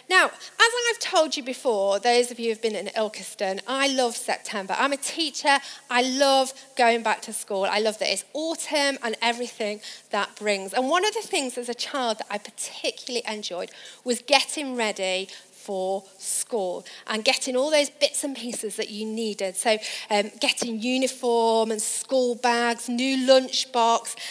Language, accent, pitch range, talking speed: English, British, 210-280 Hz, 175 wpm